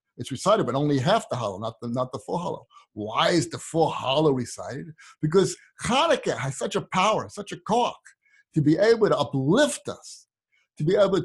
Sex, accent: male, American